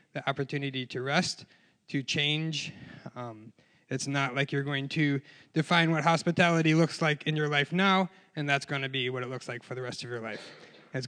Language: English